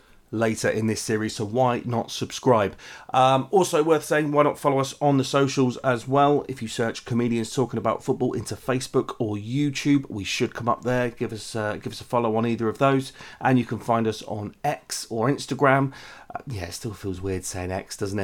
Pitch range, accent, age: 100-125 Hz, British, 30-49